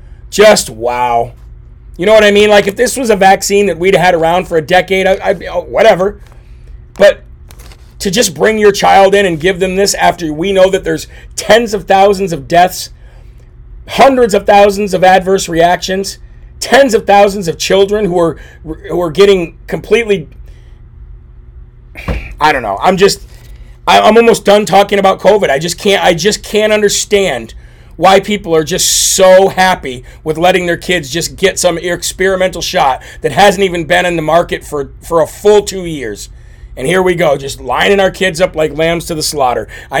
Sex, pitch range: male, 165-195 Hz